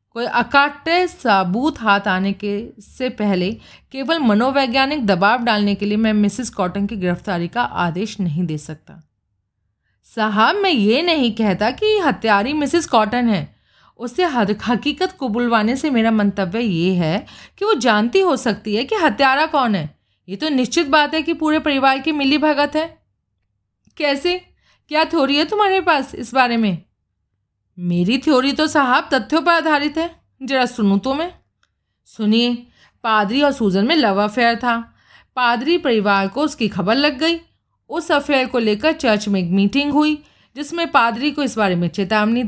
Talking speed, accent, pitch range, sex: 165 wpm, native, 205-285 Hz, female